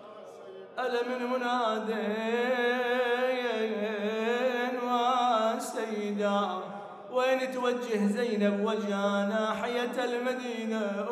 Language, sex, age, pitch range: Arabic, male, 30-49, 225-255 Hz